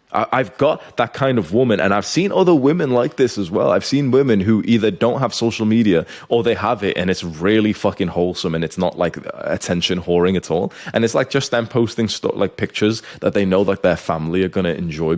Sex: male